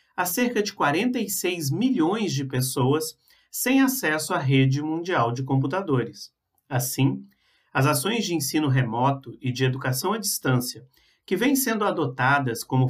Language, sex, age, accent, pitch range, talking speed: Portuguese, male, 40-59, Brazilian, 130-200 Hz, 140 wpm